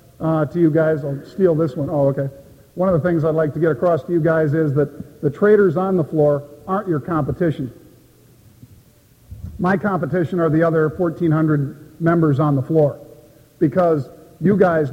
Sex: male